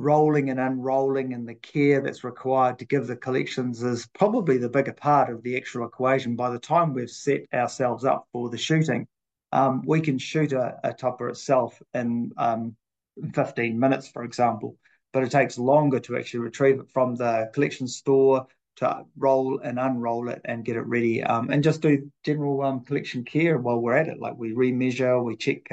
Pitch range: 120-140 Hz